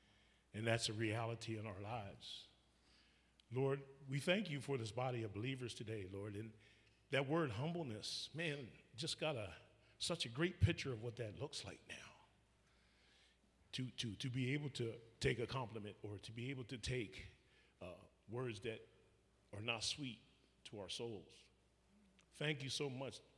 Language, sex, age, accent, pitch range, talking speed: English, male, 40-59, American, 105-135 Hz, 165 wpm